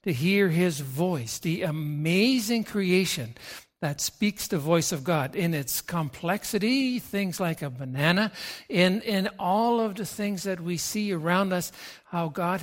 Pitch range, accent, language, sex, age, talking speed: 155-200 Hz, American, English, male, 60-79, 155 wpm